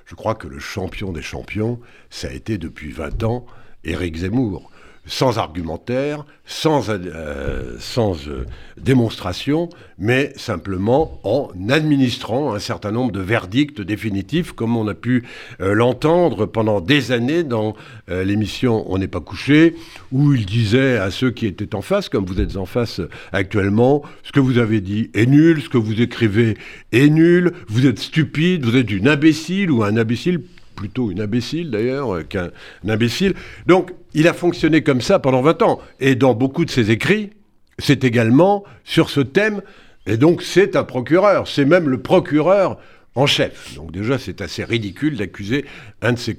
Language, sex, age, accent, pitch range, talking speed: French, male, 60-79, French, 105-150 Hz, 170 wpm